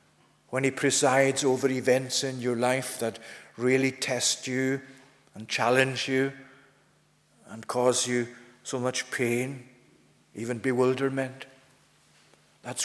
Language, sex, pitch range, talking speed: English, male, 125-140 Hz, 110 wpm